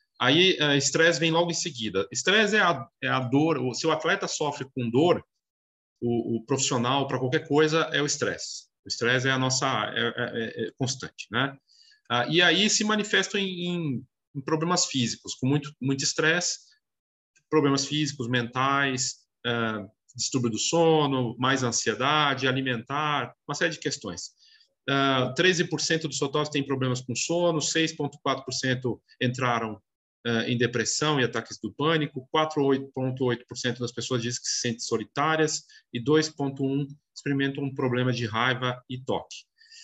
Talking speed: 150 wpm